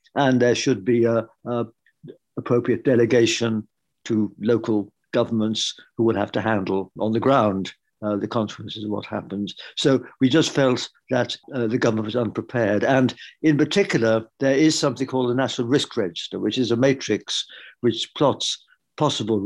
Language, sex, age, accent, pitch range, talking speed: English, male, 60-79, British, 105-125 Hz, 160 wpm